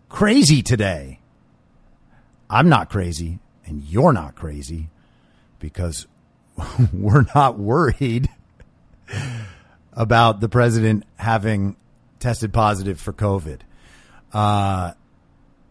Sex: male